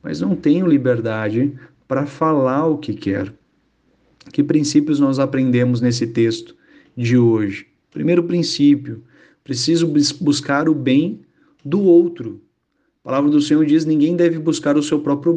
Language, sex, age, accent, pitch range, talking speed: Portuguese, male, 40-59, Brazilian, 125-165 Hz, 140 wpm